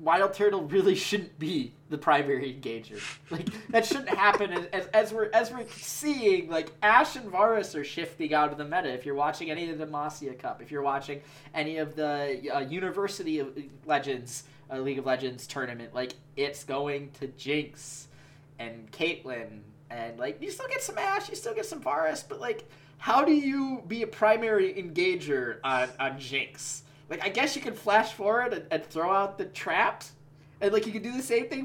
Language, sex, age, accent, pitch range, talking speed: English, male, 20-39, American, 145-215 Hz, 195 wpm